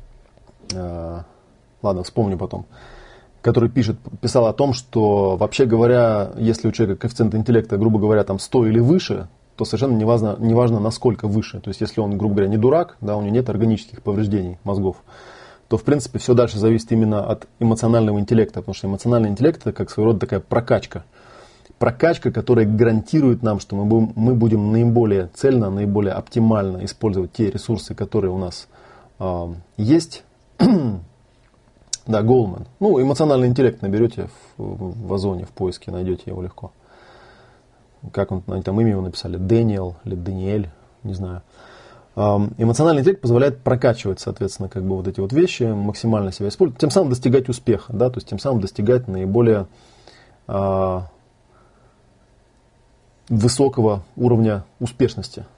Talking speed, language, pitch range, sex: 145 wpm, Russian, 100-120 Hz, male